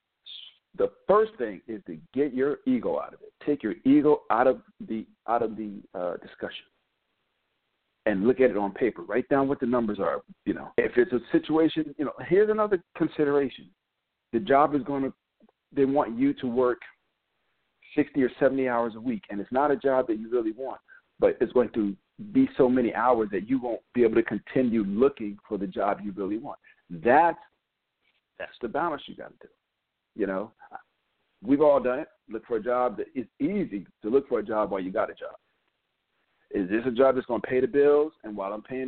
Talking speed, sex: 210 wpm, male